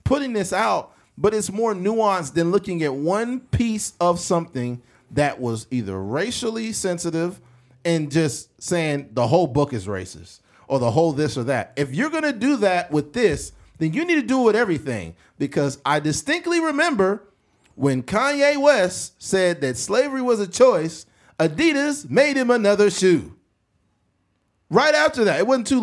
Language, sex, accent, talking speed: English, male, American, 165 wpm